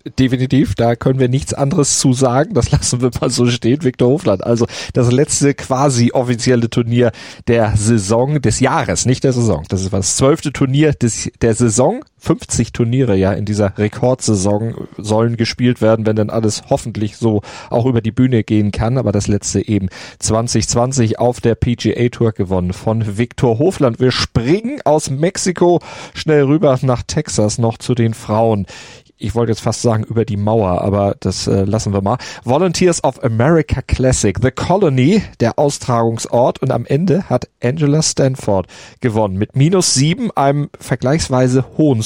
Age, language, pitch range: 40-59, German, 110-135 Hz